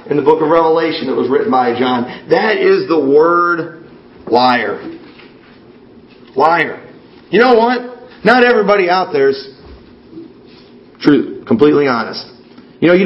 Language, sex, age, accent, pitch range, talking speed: English, male, 40-59, American, 145-195 Hz, 135 wpm